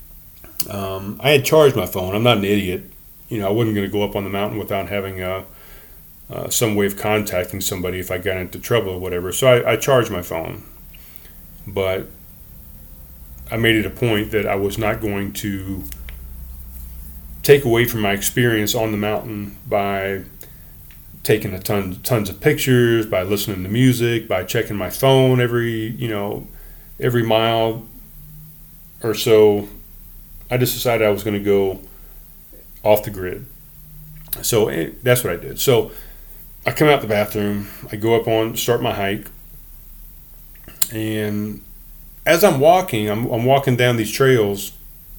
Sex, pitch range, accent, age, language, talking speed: male, 95-120 Hz, American, 30-49, English, 165 wpm